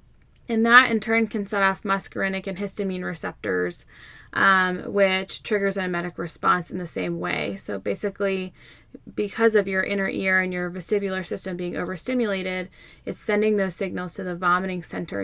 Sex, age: female, 20-39